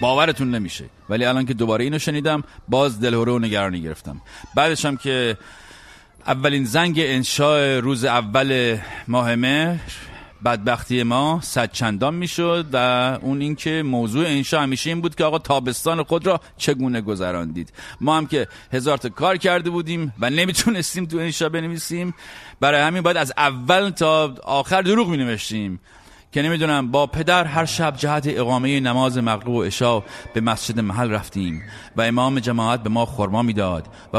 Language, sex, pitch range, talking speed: English, male, 110-150 Hz, 155 wpm